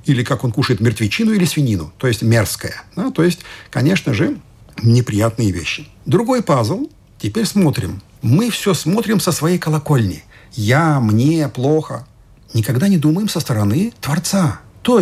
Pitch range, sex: 115-180 Hz, male